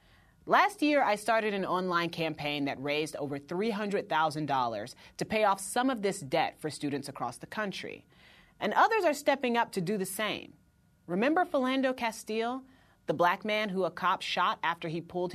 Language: English